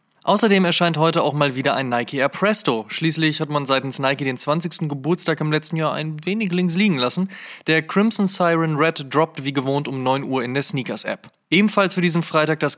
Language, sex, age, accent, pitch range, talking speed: German, male, 20-39, German, 135-170 Hz, 205 wpm